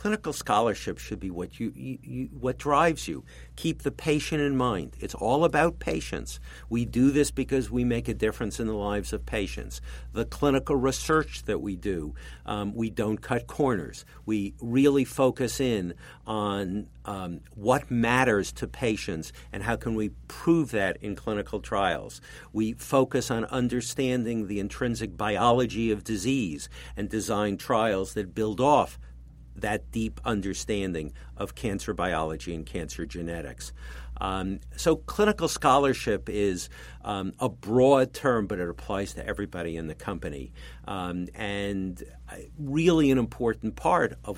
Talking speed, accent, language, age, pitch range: 150 wpm, American, English, 50-69, 85-125 Hz